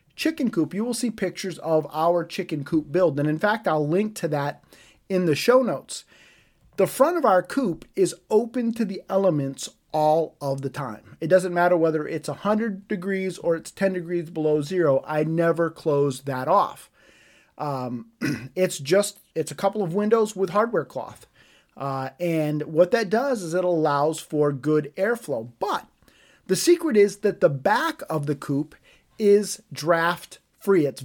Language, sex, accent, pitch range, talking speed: English, male, American, 155-205 Hz, 175 wpm